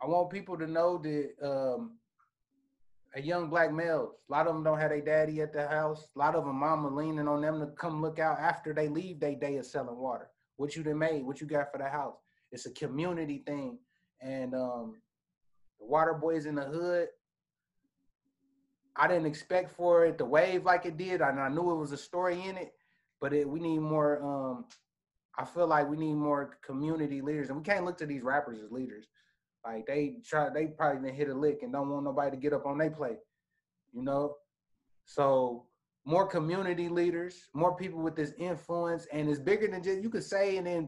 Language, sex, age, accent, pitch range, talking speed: English, male, 20-39, American, 145-180 Hz, 215 wpm